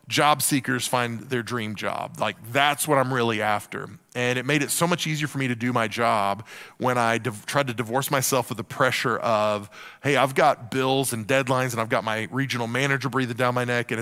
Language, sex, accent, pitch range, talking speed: English, male, American, 115-140 Hz, 225 wpm